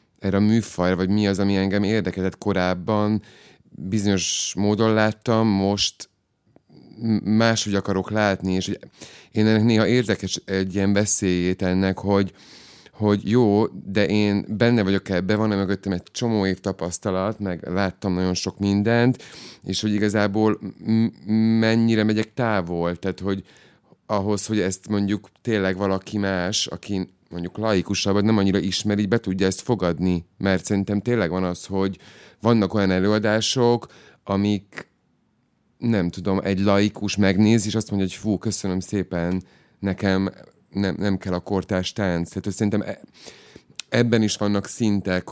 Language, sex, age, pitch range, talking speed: Hungarian, male, 30-49, 95-105 Hz, 140 wpm